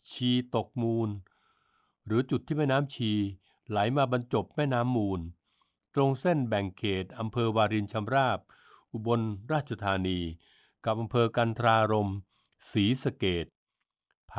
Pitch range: 105-150 Hz